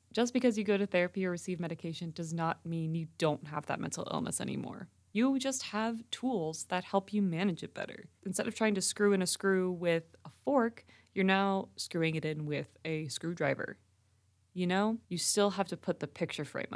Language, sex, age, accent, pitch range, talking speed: English, female, 20-39, American, 165-225 Hz, 210 wpm